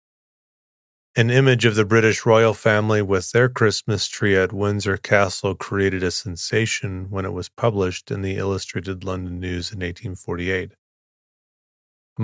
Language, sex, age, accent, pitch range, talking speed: English, male, 30-49, American, 95-110 Hz, 140 wpm